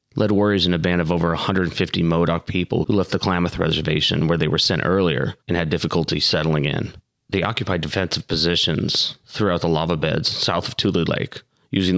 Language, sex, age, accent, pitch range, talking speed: English, male, 30-49, American, 85-95 Hz, 190 wpm